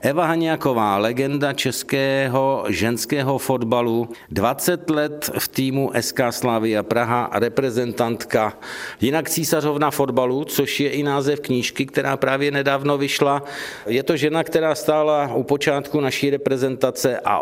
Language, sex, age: Czech, male, 50-69